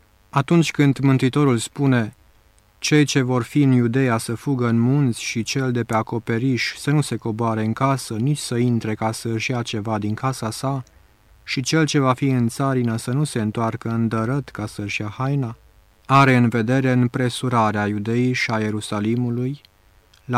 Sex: male